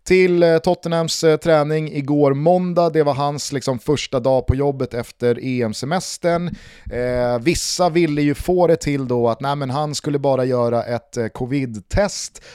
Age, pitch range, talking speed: 30-49, 115-150 Hz, 160 wpm